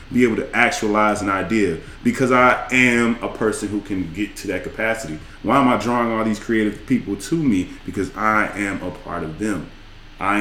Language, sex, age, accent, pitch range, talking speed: English, male, 20-39, American, 95-110 Hz, 200 wpm